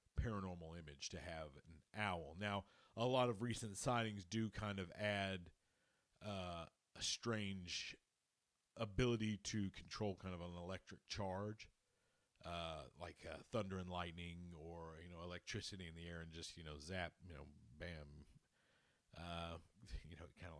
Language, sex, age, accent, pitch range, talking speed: English, male, 40-59, American, 85-105 Hz, 155 wpm